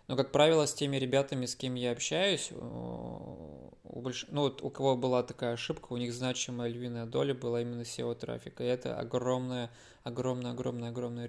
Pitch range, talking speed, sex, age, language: 120-135 Hz, 170 wpm, male, 20-39, Russian